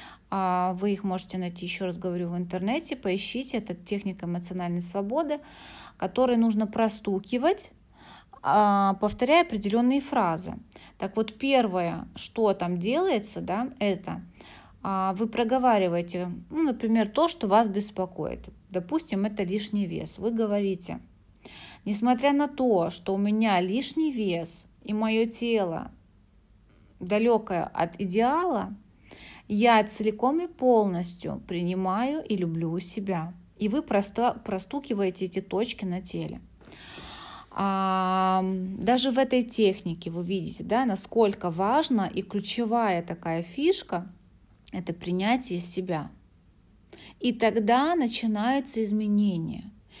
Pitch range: 180-235 Hz